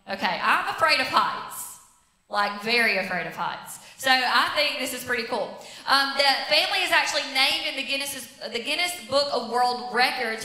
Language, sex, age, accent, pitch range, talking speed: English, female, 20-39, American, 245-300 Hz, 180 wpm